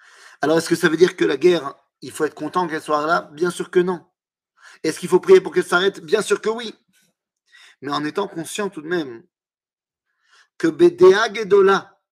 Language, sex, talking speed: French, male, 205 wpm